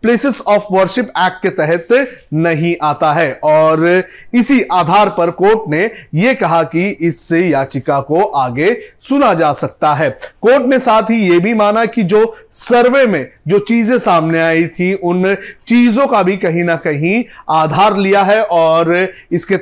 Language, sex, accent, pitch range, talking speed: Hindi, male, native, 165-210 Hz, 165 wpm